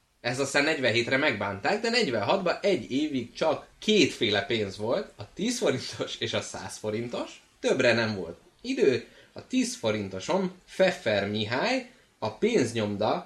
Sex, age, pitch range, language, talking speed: male, 20-39, 105-175 Hz, Hungarian, 135 wpm